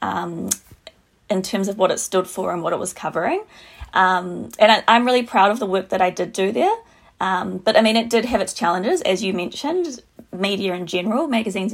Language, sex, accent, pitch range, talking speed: English, female, Australian, 185-230 Hz, 215 wpm